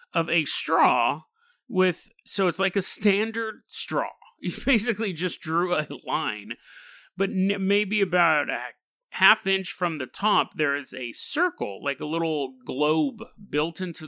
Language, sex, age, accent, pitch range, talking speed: English, male, 30-49, American, 165-235 Hz, 150 wpm